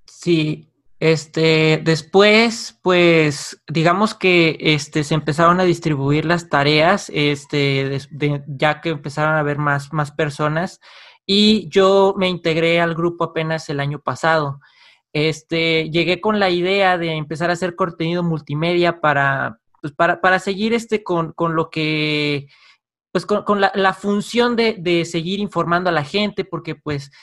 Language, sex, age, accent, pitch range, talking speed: Spanish, male, 20-39, Mexican, 155-190 Hz, 155 wpm